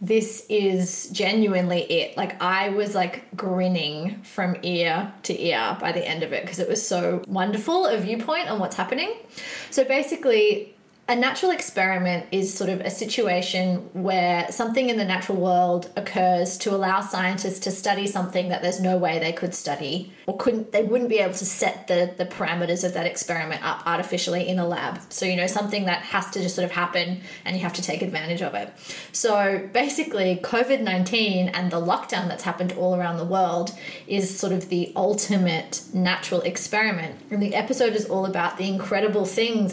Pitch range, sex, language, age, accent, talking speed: 180-205 Hz, female, English, 20-39, Australian, 185 wpm